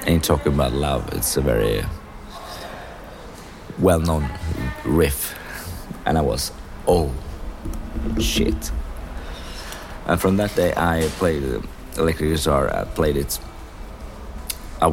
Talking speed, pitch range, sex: 105 wpm, 70-85 Hz, male